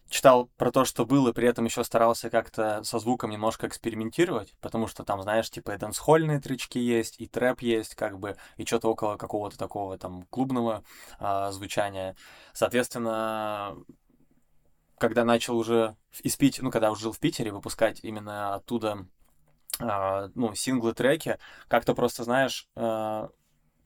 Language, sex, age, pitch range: Russian, male, 20-39, 100-115 Hz